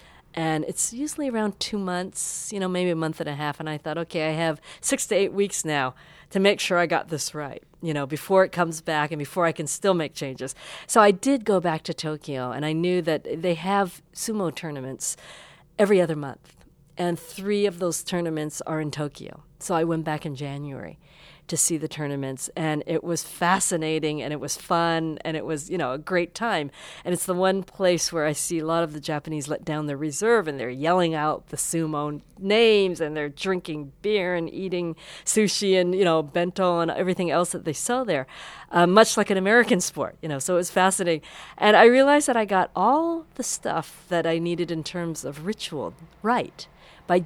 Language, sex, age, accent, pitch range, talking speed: English, female, 50-69, American, 155-190 Hz, 215 wpm